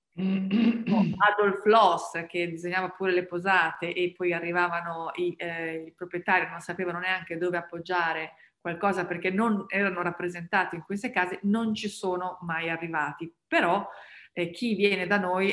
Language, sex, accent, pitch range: Italian, female, native, 170-195 Hz